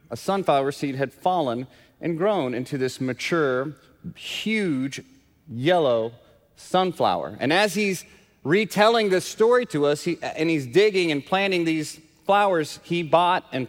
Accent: American